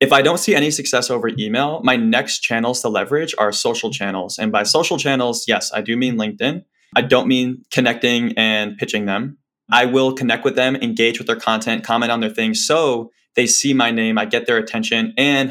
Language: English